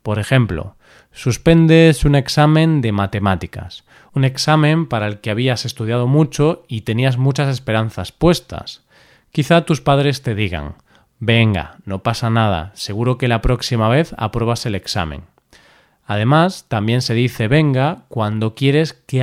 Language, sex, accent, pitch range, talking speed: Spanish, male, Spanish, 110-145 Hz, 140 wpm